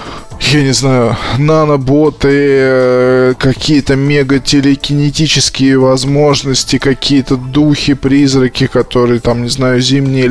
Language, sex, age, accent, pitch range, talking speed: Russian, male, 20-39, native, 130-150 Hz, 85 wpm